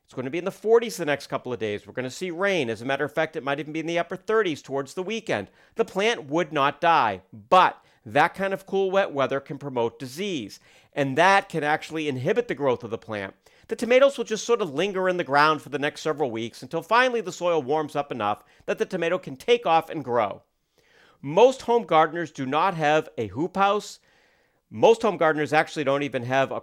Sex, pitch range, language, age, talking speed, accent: male, 135-195 Hz, English, 50-69, 235 wpm, American